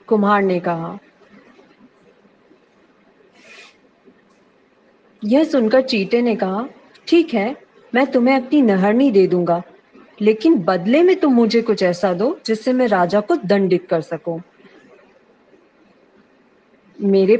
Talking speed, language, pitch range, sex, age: 115 wpm, Hindi, 190-265 Hz, female, 40-59